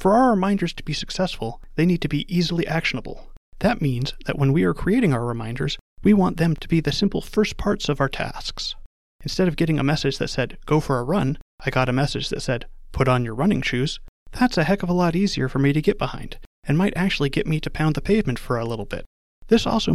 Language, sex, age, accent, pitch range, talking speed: English, male, 30-49, American, 135-185 Hz, 245 wpm